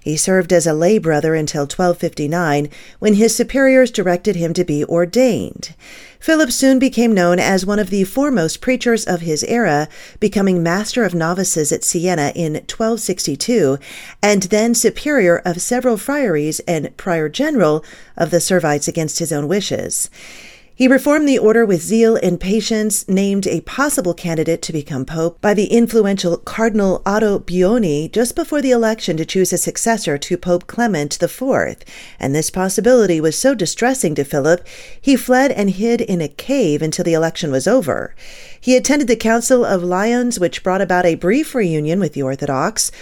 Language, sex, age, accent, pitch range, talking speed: English, female, 40-59, American, 165-235 Hz, 170 wpm